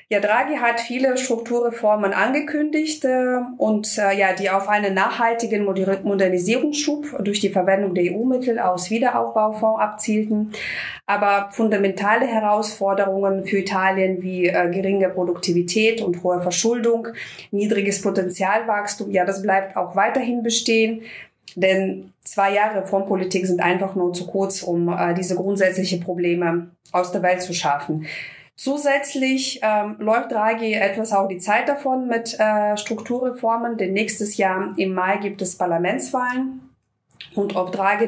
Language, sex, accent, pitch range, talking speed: German, female, German, 190-230 Hz, 135 wpm